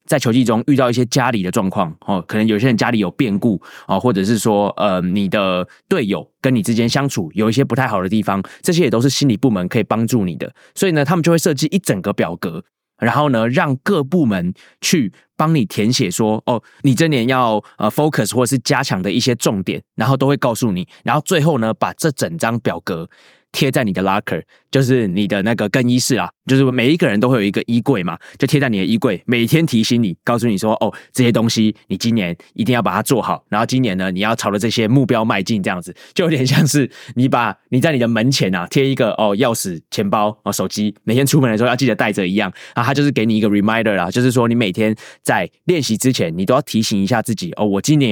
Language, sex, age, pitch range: Chinese, male, 20-39, 110-140 Hz